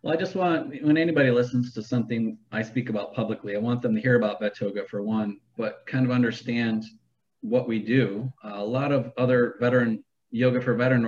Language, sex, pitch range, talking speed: English, male, 110-125 Hz, 205 wpm